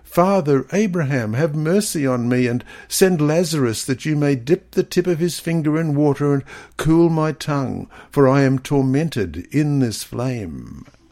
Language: English